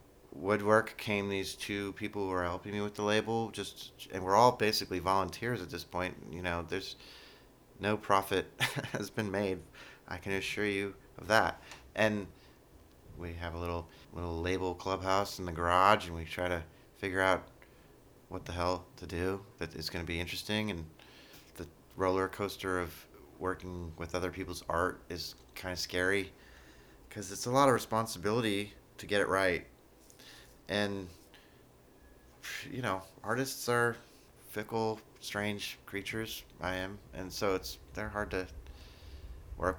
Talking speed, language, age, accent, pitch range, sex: 155 wpm, English, 30-49, American, 85-105 Hz, male